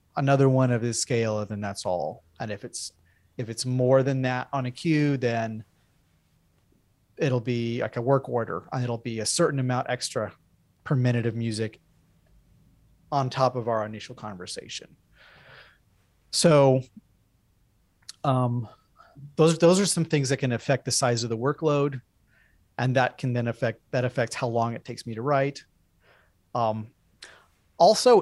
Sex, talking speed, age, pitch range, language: male, 155 wpm, 30-49, 110-140 Hz, English